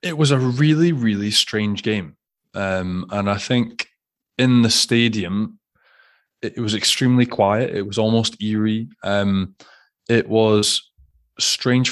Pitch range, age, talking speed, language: 100-115 Hz, 20-39, 130 wpm, English